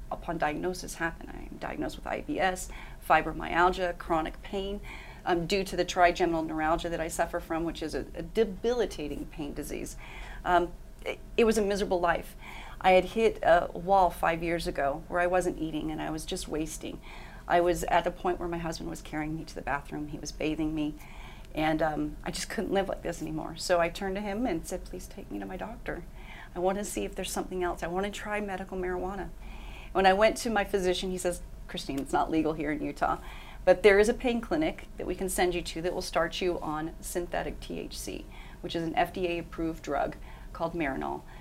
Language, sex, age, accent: English, female, 40-59, American